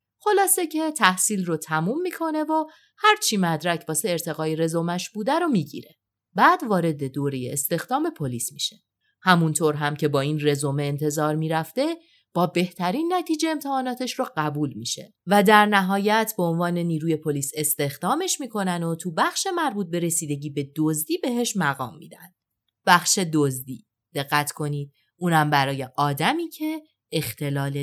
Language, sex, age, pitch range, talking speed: Persian, female, 30-49, 150-225 Hz, 140 wpm